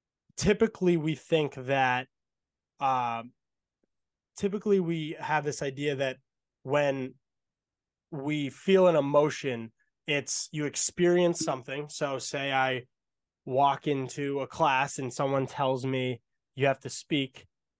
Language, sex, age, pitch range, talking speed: English, male, 20-39, 125-145 Hz, 120 wpm